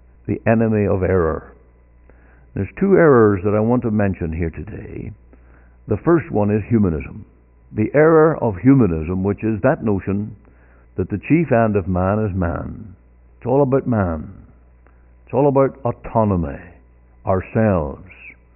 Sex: male